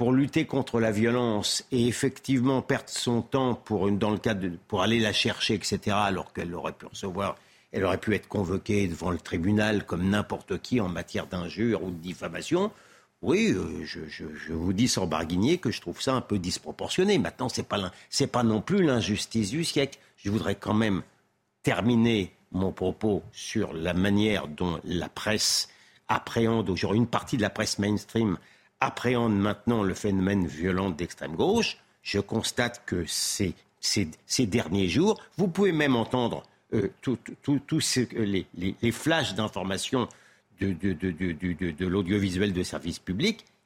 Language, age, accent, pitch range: French, 50-69, French, 95-135 Hz